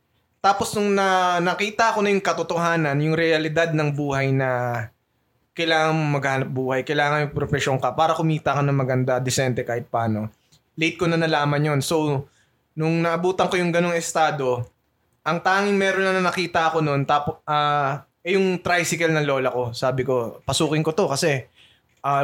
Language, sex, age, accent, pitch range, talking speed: Filipino, male, 20-39, native, 140-180 Hz, 175 wpm